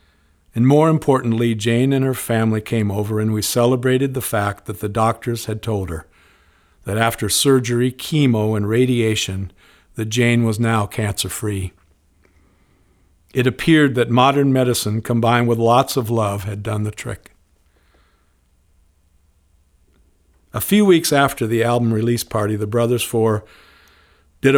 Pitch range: 105-135 Hz